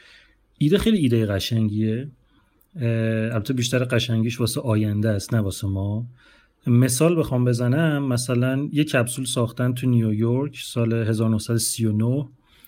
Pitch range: 110-130 Hz